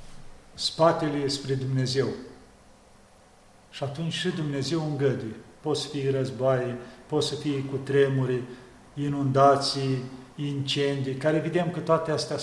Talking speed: 115 wpm